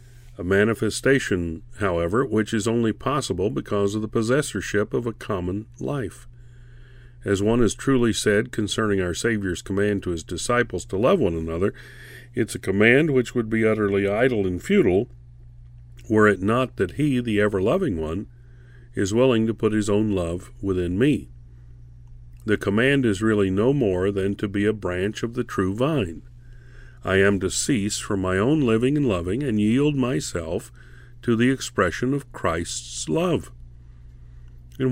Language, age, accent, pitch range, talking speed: English, 50-69, American, 90-120 Hz, 160 wpm